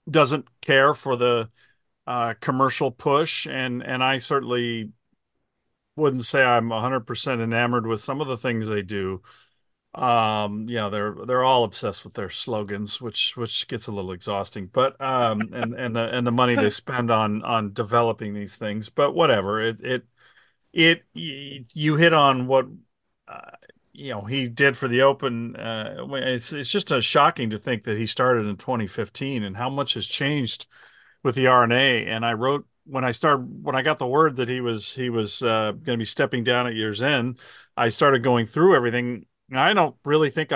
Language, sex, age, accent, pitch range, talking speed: English, male, 40-59, American, 115-135 Hz, 190 wpm